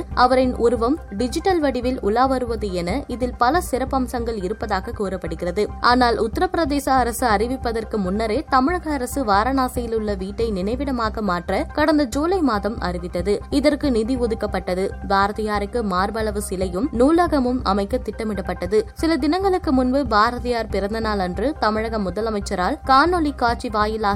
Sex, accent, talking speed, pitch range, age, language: female, native, 115 wpm, 205-265 Hz, 20-39, Tamil